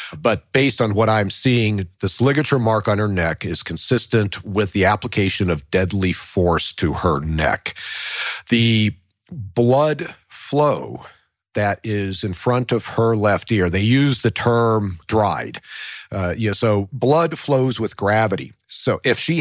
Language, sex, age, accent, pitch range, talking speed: English, male, 50-69, American, 95-125 Hz, 155 wpm